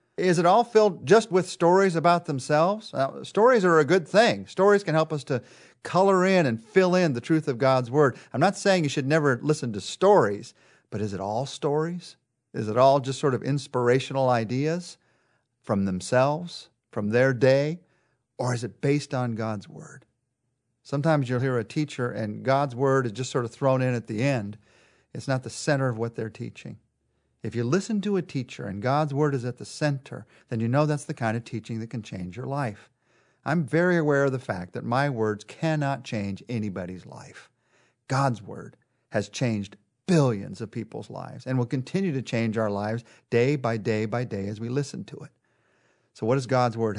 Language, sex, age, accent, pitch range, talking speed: English, male, 50-69, American, 115-155 Hz, 200 wpm